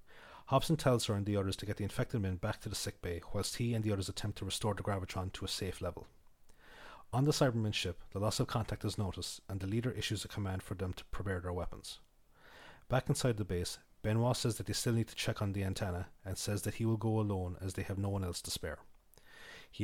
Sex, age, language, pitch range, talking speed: male, 30-49, English, 95-110 Hz, 250 wpm